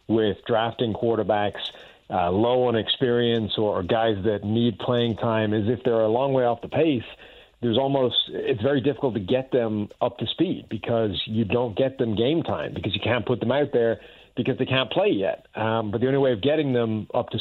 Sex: male